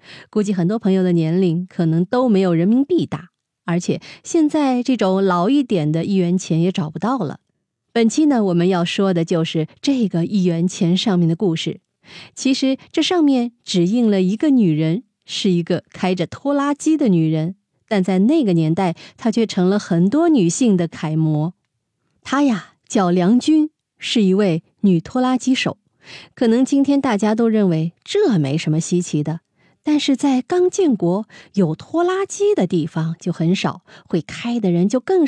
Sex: female